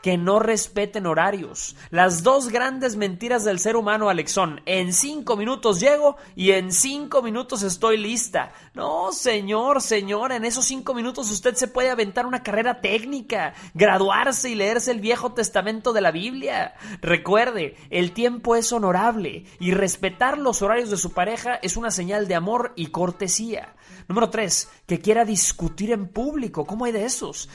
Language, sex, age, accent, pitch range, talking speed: Spanish, male, 30-49, Mexican, 185-240 Hz, 165 wpm